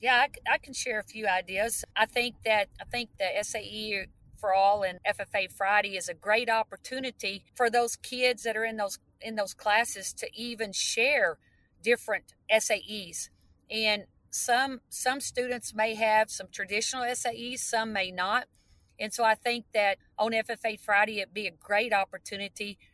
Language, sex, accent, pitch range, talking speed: English, female, American, 195-235 Hz, 165 wpm